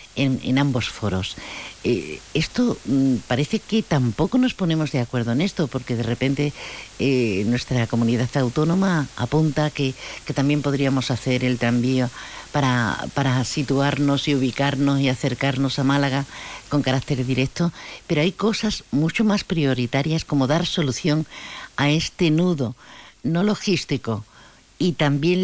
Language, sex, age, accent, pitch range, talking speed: Spanish, female, 50-69, Spanish, 130-170 Hz, 135 wpm